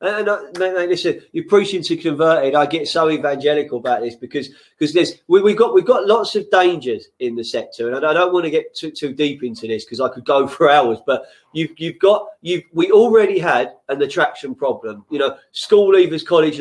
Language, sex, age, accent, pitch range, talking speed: English, male, 30-49, British, 145-215 Hz, 225 wpm